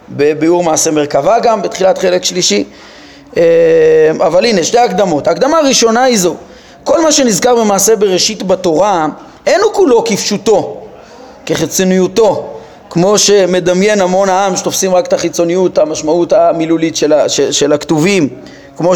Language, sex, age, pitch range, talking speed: Hebrew, male, 30-49, 185-250 Hz, 125 wpm